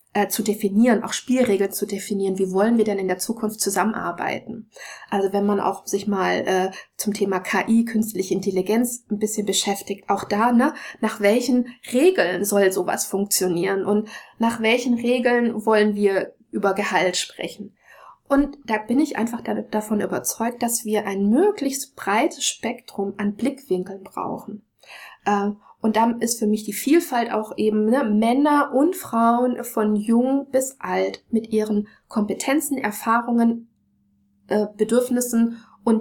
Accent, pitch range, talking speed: German, 200-235 Hz, 150 wpm